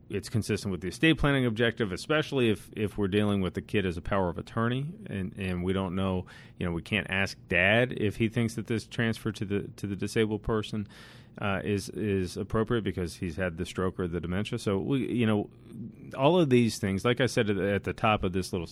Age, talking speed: 40-59, 235 wpm